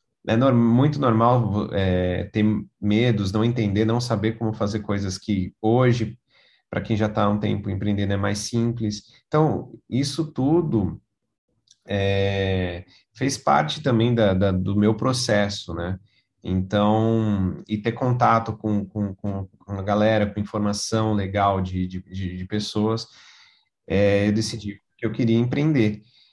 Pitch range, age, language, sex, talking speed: 100-120 Hz, 30-49, Portuguese, male, 145 wpm